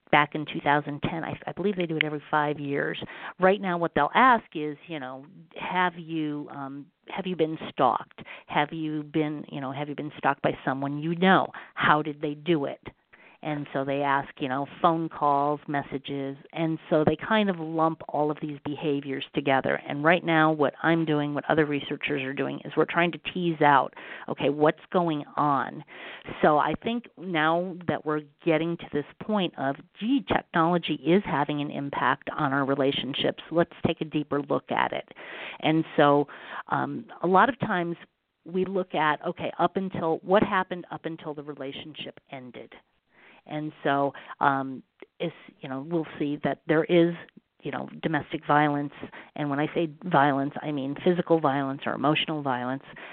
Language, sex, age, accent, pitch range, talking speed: English, female, 40-59, American, 145-170 Hz, 180 wpm